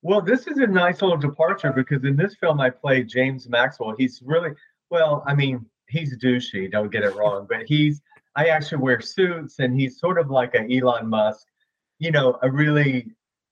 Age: 40-59